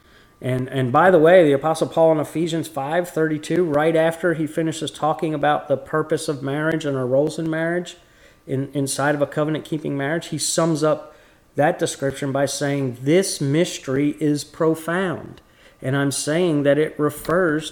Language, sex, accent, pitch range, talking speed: English, male, American, 135-170 Hz, 170 wpm